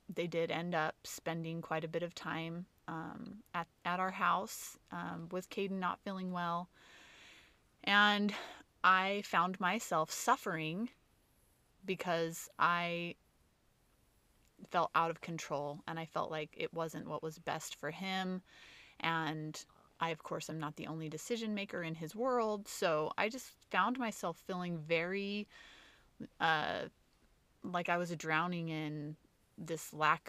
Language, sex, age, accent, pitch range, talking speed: English, female, 30-49, American, 160-185 Hz, 140 wpm